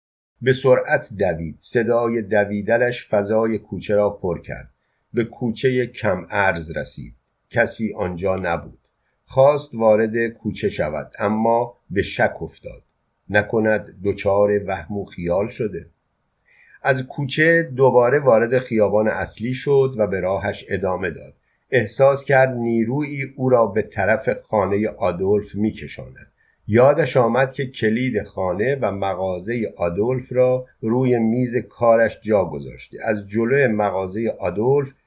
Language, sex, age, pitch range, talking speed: Persian, male, 50-69, 100-125 Hz, 125 wpm